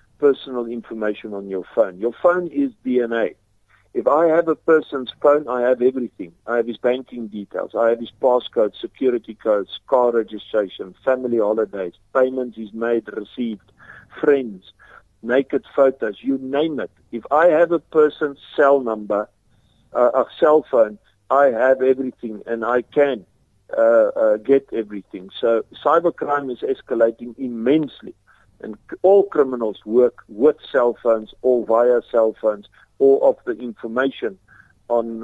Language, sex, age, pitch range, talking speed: English, male, 50-69, 115-140 Hz, 145 wpm